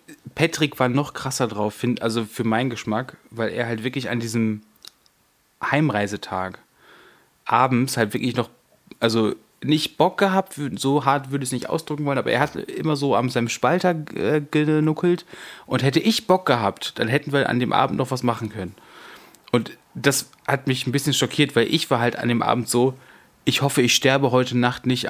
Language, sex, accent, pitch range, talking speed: German, male, German, 120-145 Hz, 185 wpm